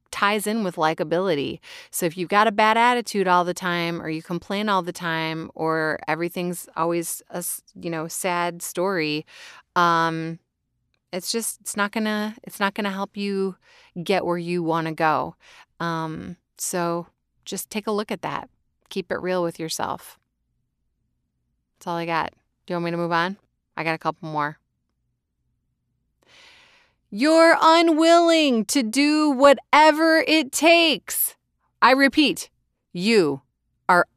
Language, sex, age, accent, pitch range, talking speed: English, female, 30-49, American, 165-225 Hz, 150 wpm